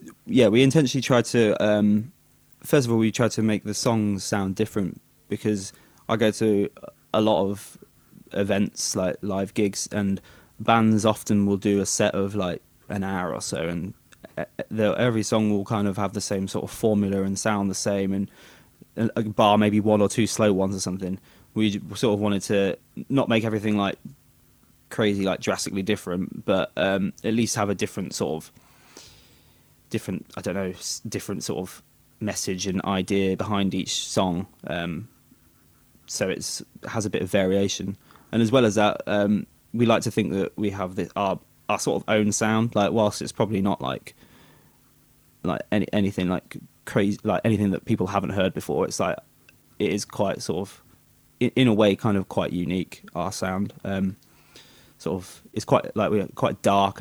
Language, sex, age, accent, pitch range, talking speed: English, male, 20-39, British, 95-110 Hz, 185 wpm